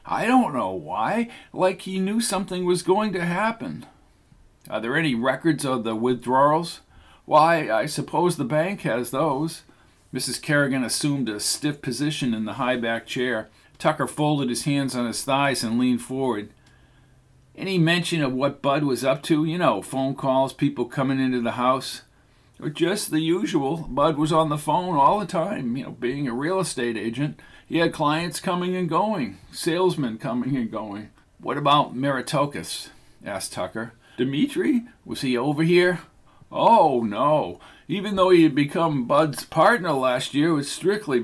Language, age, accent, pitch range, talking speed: English, 50-69, American, 130-170 Hz, 170 wpm